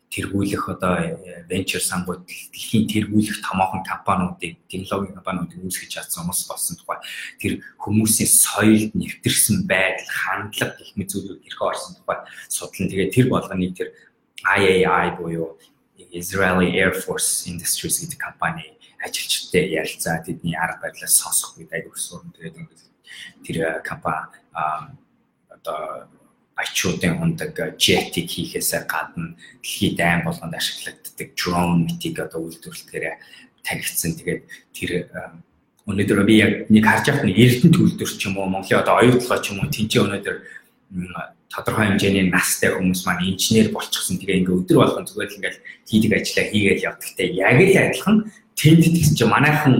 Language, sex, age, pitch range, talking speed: English, male, 20-39, 90-110 Hz, 110 wpm